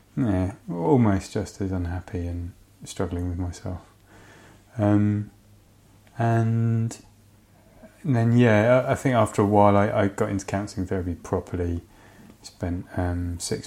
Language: English